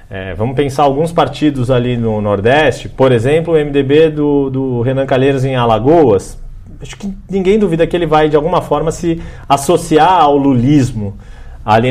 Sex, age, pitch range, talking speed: male, 40-59, 115-145 Hz, 160 wpm